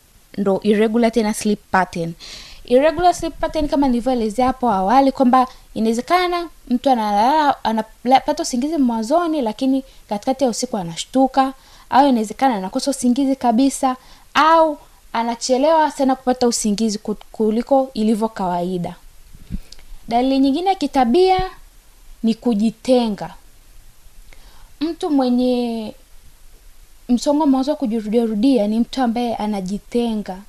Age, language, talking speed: 20-39, Swahili, 100 wpm